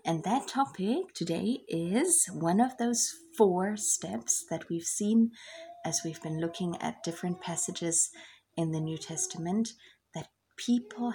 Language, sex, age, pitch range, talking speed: English, female, 30-49, 165-205 Hz, 140 wpm